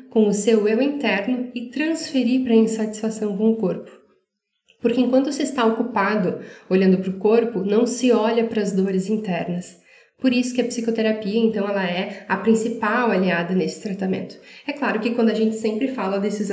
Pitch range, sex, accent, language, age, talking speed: 195-230 Hz, female, Brazilian, Portuguese, 10-29, 185 wpm